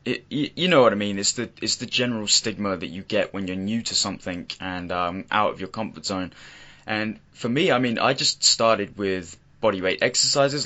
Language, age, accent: English, 10-29, British